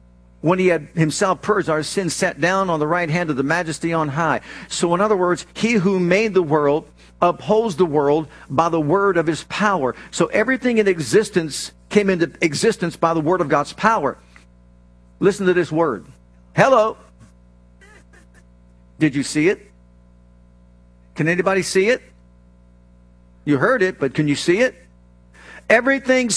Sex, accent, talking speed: male, American, 160 wpm